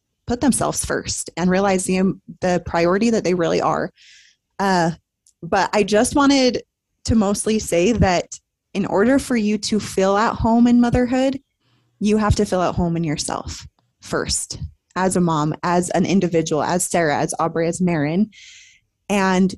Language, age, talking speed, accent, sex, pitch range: English, 20-39, 160 wpm, American, female, 180-215 Hz